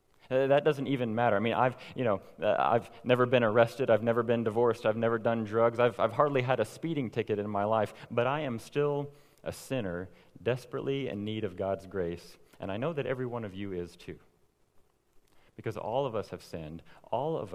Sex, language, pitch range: male, English, 95-125 Hz